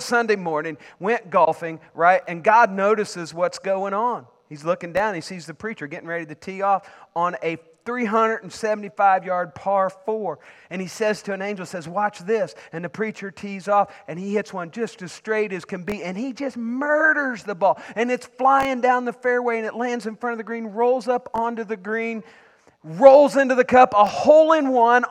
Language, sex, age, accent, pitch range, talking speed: English, male, 40-59, American, 195-270 Hz, 200 wpm